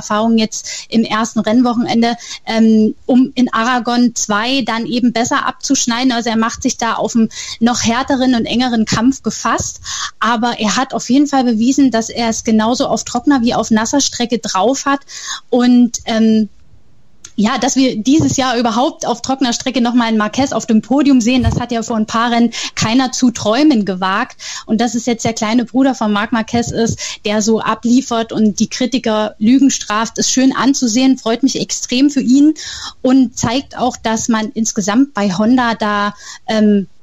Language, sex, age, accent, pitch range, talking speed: German, female, 10-29, German, 220-255 Hz, 180 wpm